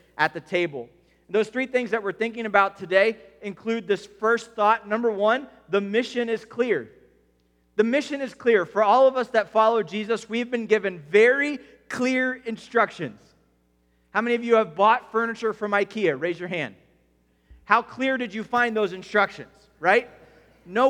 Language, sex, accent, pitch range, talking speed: English, male, American, 185-250 Hz, 170 wpm